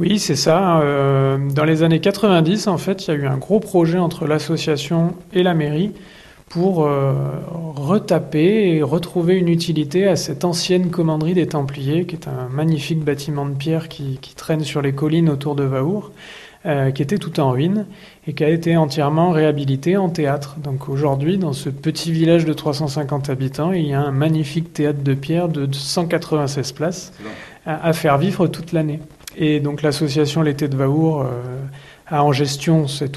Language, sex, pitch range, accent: French, male, 140-170 Hz, French